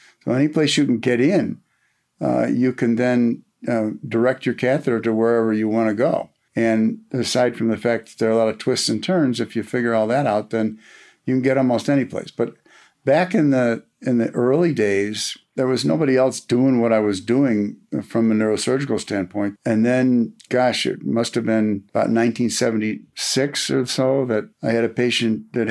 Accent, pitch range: American, 110-125 Hz